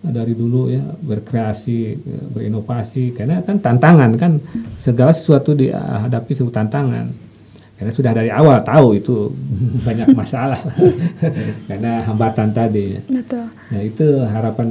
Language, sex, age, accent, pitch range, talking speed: Indonesian, male, 50-69, native, 110-135 Hz, 120 wpm